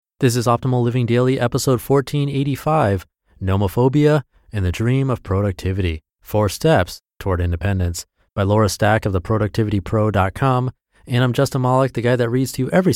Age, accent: 30-49, American